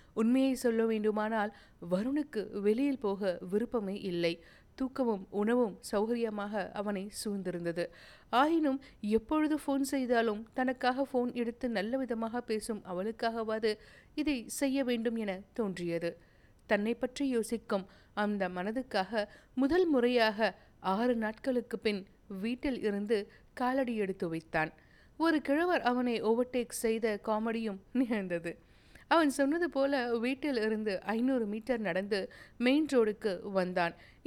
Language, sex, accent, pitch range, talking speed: Tamil, female, native, 205-260 Hz, 105 wpm